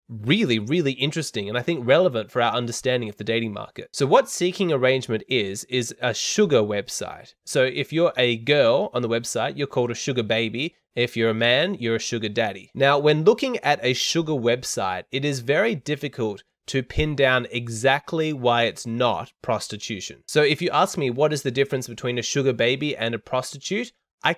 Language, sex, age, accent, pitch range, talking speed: English, male, 20-39, Australian, 115-145 Hz, 195 wpm